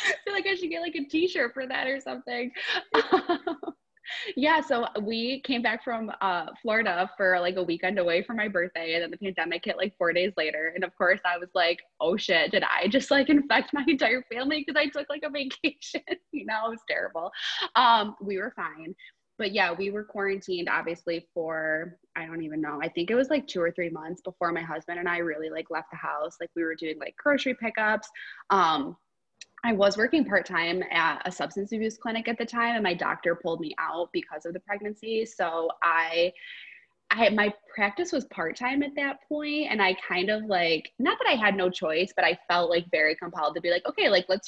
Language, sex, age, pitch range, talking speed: English, female, 20-39, 170-270 Hz, 220 wpm